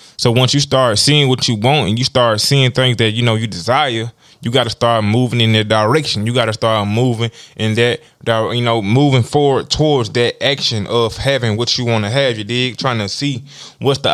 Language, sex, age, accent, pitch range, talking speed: English, male, 20-39, American, 110-130 Hz, 230 wpm